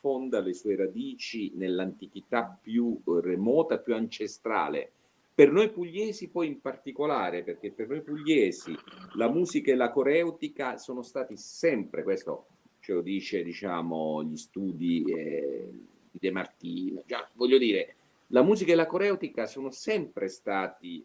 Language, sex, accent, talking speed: Italian, male, native, 135 wpm